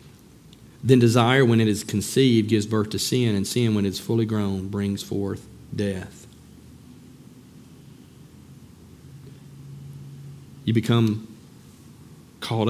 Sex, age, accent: male, 40-59, American